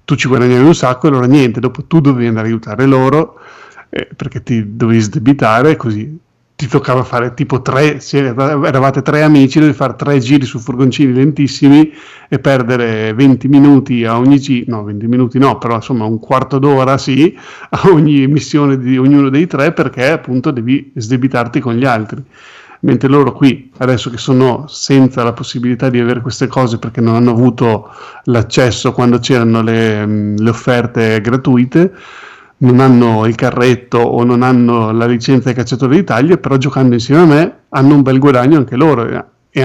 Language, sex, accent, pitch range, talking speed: Italian, male, native, 120-140 Hz, 175 wpm